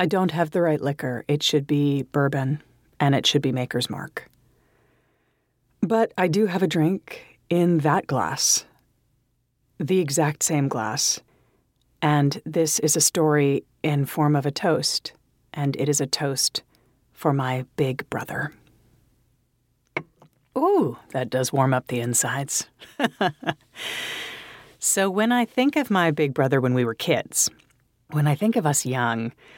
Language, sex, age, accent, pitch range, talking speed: English, female, 40-59, American, 130-155 Hz, 150 wpm